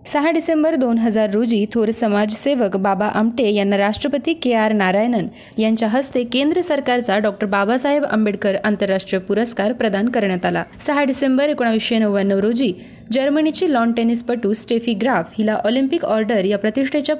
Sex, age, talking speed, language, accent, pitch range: female, 20-39, 145 wpm, Marathi, native, 210-260 Hz